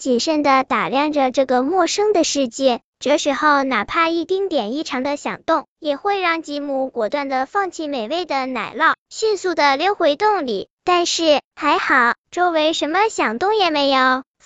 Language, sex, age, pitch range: Chinese, male, 10-29, 275-355 Hz